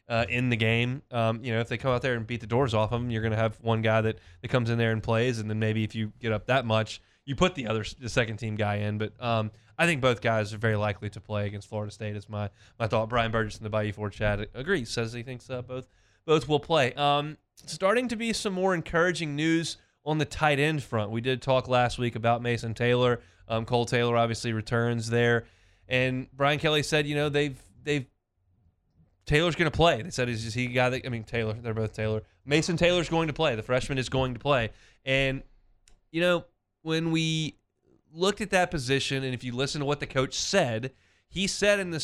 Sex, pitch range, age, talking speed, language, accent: male, 110-145 Hz, 20-39, 240 wpm, English, American